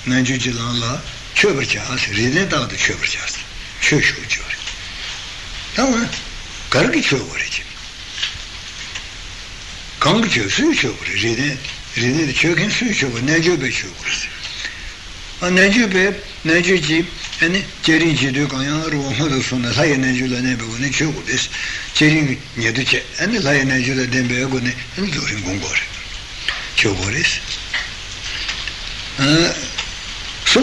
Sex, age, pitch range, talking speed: male, 60-79, 115-155 Hz, 90 wpm